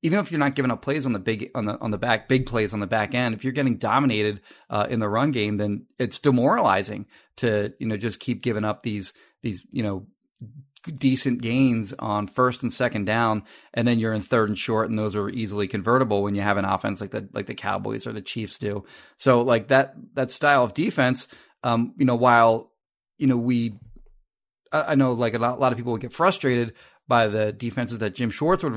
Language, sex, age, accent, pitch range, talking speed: English, male, 30-49, American, 105-130 Hz, 230 wpm